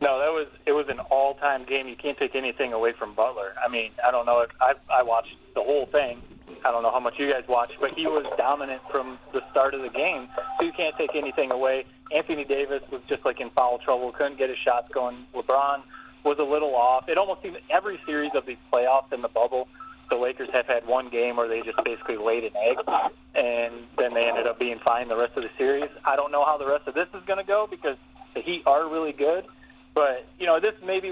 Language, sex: English, male